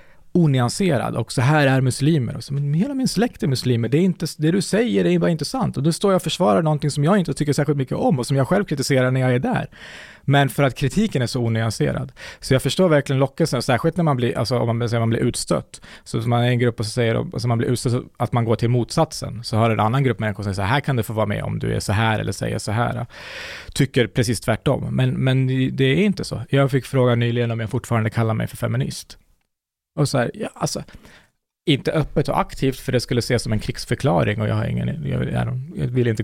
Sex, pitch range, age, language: male, 115-145 Hz, 20-39, Swedish